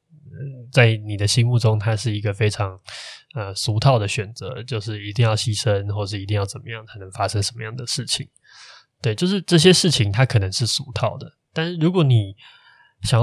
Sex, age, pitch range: male, 20-39, 105-130 Hz